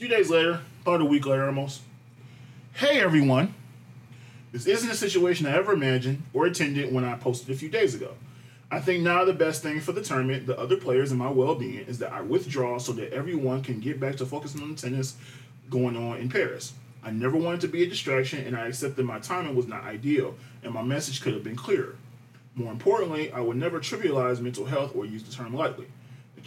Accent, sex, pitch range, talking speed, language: American, male, 125-145 Hz, 215 wpm, English